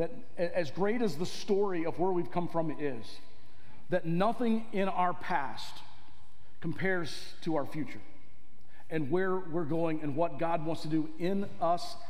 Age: 40-59